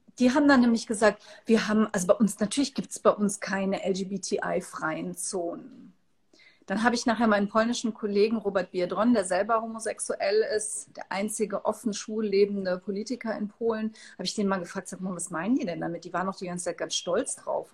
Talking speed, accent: 195 wpm, German